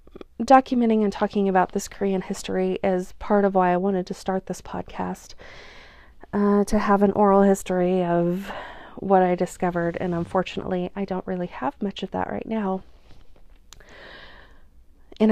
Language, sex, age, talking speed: English, female, 30-49, 155 wpm